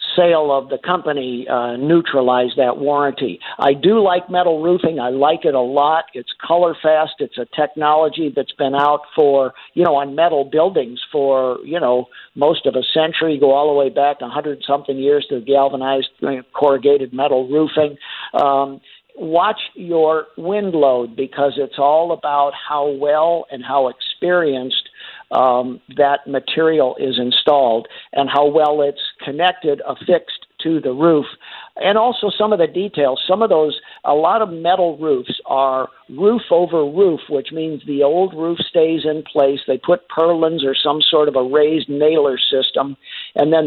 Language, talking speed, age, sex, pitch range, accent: English, 165 wpm, 50-69, male, 135-165 Hz, American